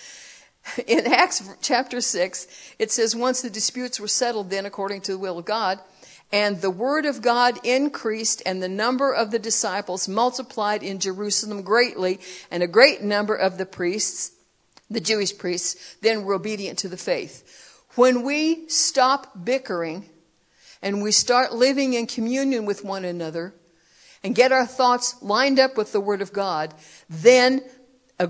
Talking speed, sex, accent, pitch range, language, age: 160 wpm, female, American, 180-240 Hz, English, 60-79